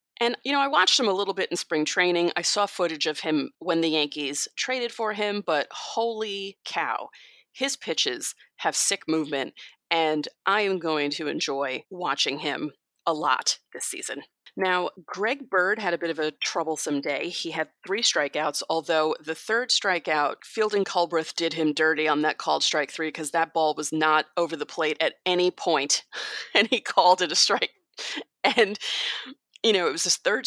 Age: 30-49